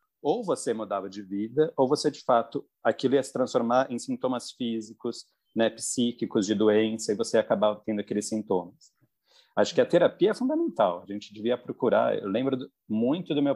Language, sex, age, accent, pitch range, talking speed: Portuguese, male, 40-59, Brazilian, 100-145 Hz, 190 wpm